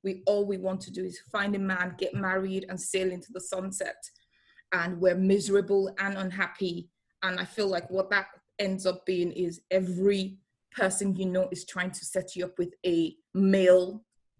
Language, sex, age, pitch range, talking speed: English, female, 20-39, 180-195 Hz, 190 wpm